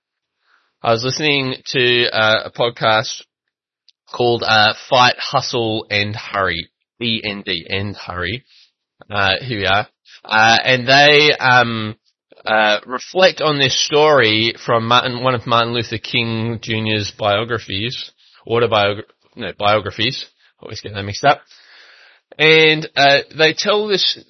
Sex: male